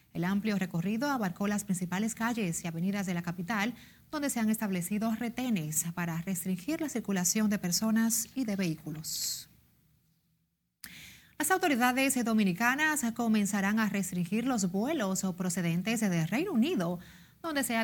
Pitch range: 185-235 Hz